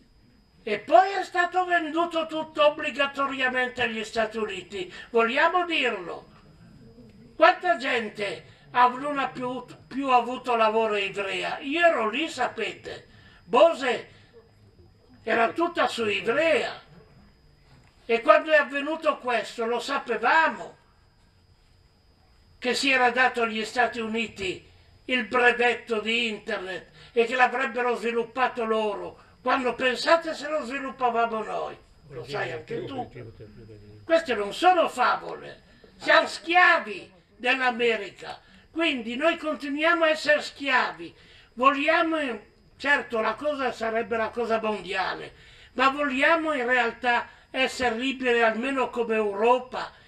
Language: Italian